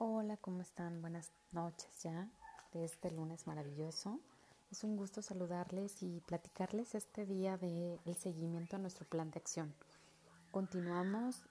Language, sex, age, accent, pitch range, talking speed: Spanish, female, 30-49, Mexican, 175-205 Hz, 135 wpm